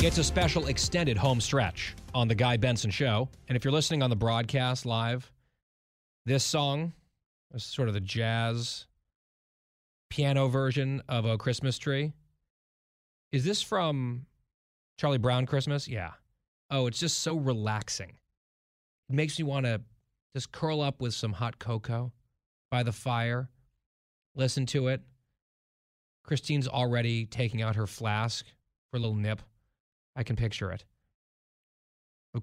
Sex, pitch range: male, 105-135 Hz